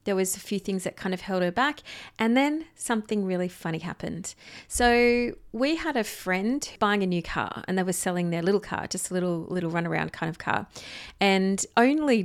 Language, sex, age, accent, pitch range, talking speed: English, female, 30-49, Australian, 180-235 Hz, 210 wpm